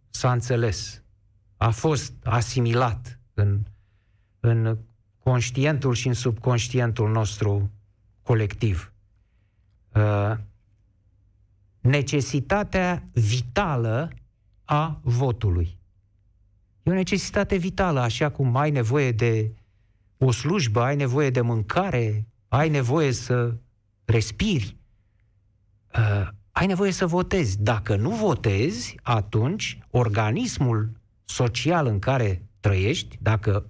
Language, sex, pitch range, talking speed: Romanian, male, 105-150 Hz, 90 wpm